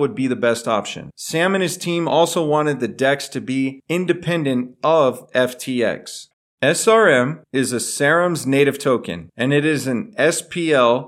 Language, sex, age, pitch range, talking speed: English, male, 40-59, 115-150 Hz, 155 wpm